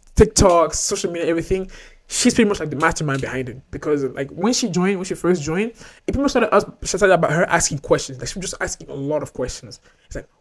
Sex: male